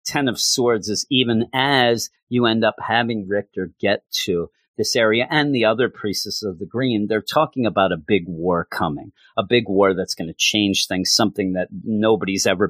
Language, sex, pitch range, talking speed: English, male, 95-125 Hz, 195 wpm